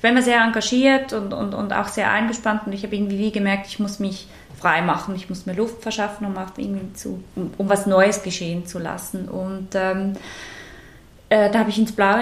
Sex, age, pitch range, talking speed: female, 20-39, 200-235 Hz, 215 wpm